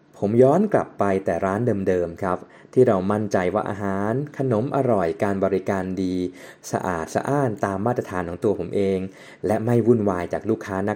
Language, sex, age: Thai, male, 20-39